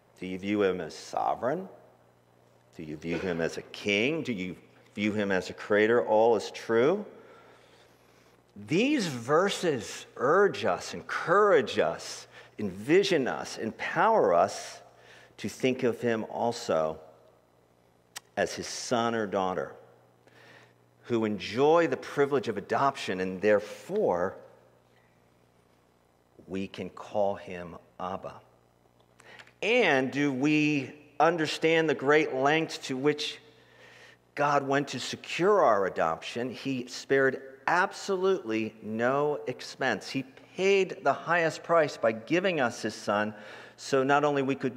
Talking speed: 120 wpm